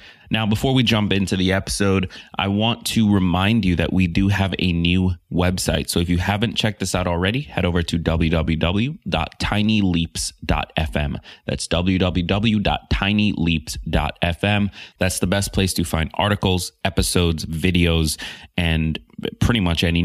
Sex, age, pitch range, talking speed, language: male, 30-49, 80-100 Hz, 140 wpm, English